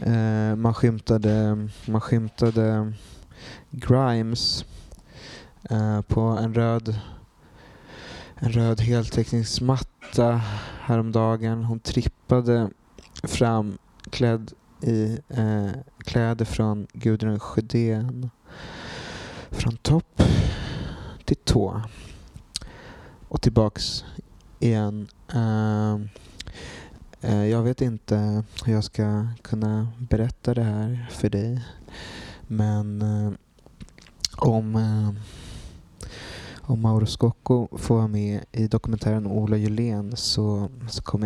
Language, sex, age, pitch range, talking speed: Swedish, male, 20-39, 105-115 Hz, 85 wpm